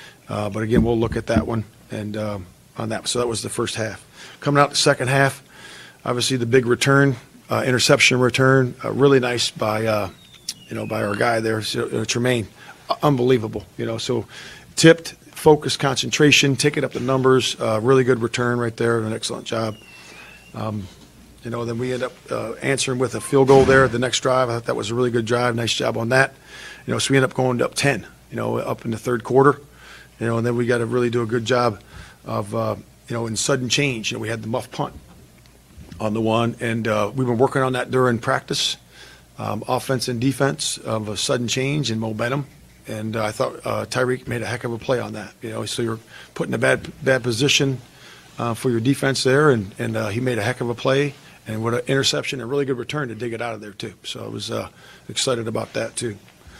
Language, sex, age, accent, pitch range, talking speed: English, male, 40-59, American, 110-130 Hz, 230 wpm